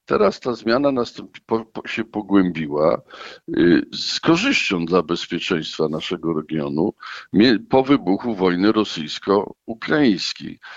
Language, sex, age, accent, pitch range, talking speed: Polish, male, 50-69, native, 95-115 Hz, 85 wpm